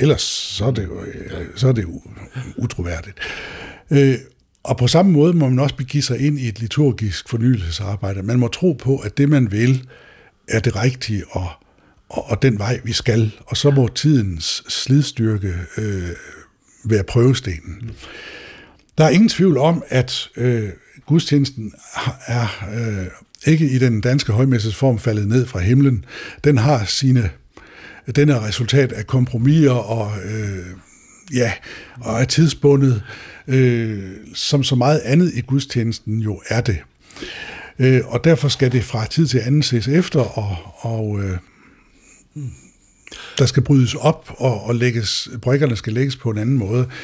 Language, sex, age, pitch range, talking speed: Danish, male, 60-79, 110-140 Hz, 150 wpm